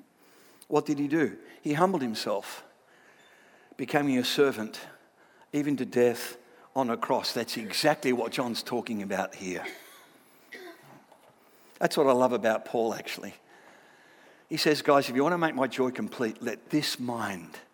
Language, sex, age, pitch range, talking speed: English, male, 60-79, 125-175 Hz, 150 wpm